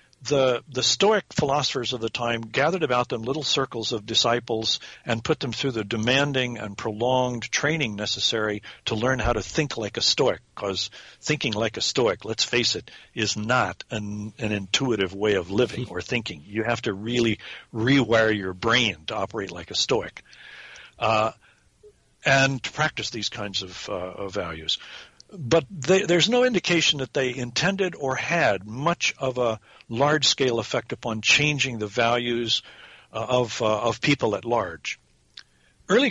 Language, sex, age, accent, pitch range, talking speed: English, male, 60-79, American, 110-140 Hz, 165 wpm